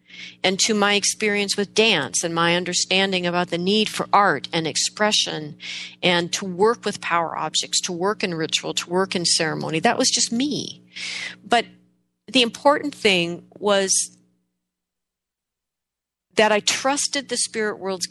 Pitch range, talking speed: 155-215 Hz, 150 wpm